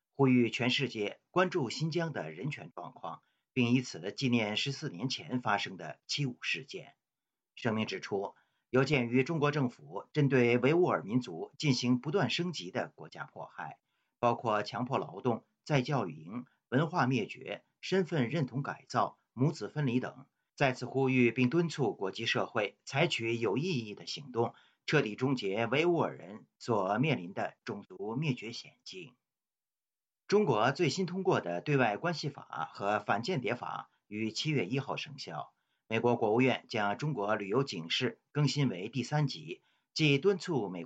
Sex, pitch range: male, 125-150 Hz